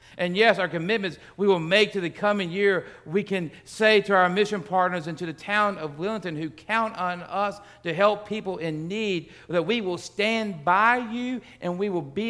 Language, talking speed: English, 210 wpm